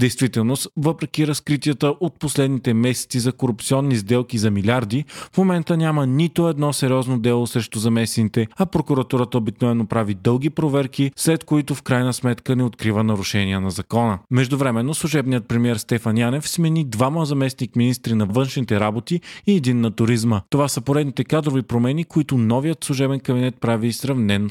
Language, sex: Bulgarian, male